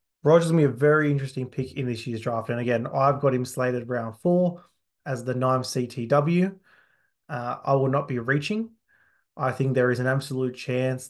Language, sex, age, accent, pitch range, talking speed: English, male, 20-39, Australian, 125-140 Hz, 195 wpm